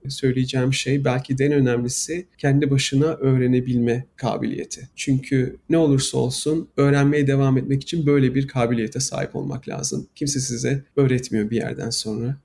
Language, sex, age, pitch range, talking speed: Turkish, male, 40-59, 130-155 Hz, 145 wpm